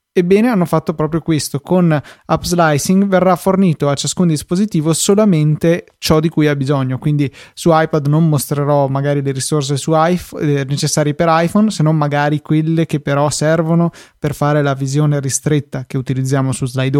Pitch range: 140-165 Hz